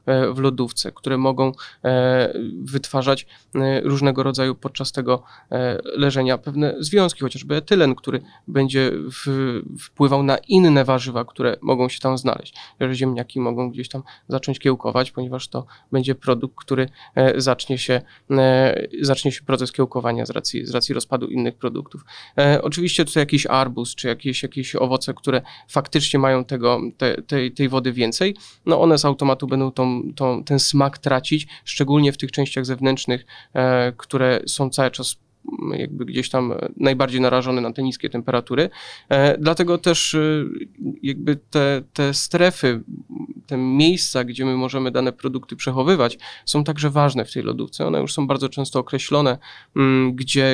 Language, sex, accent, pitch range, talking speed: Polish, male, native, 130-140 Hz, 145 wpm